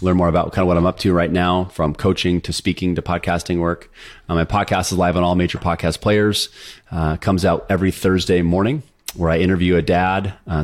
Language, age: English, 30-49